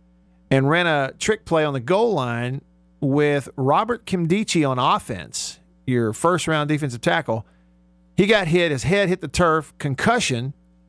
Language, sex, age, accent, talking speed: English, male, 50-69, American, 150 wpm